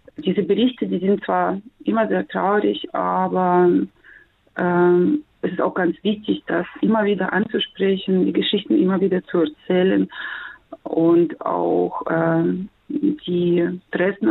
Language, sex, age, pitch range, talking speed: German, female, 30-49, 175-215 Hz, 125 wpm